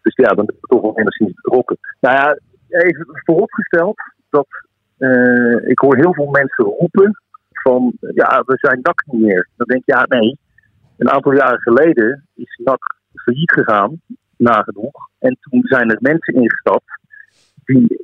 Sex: male